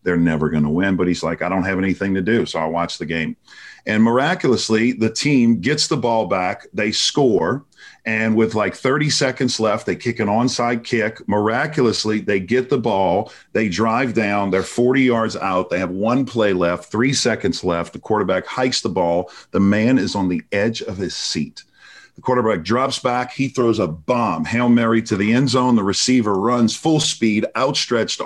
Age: 50-69